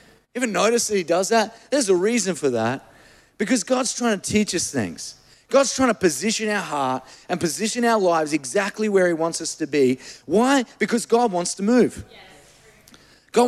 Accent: Australian